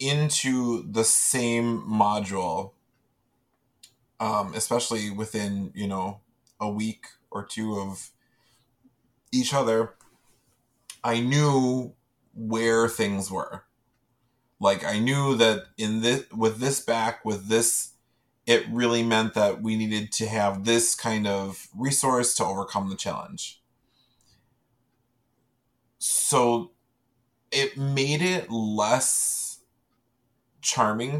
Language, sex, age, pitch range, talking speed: English, male, 20-39, 110-125 Hz, 105 wpm